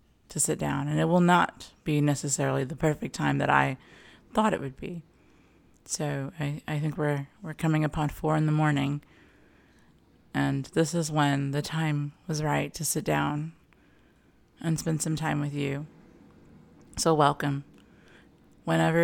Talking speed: 160 wpm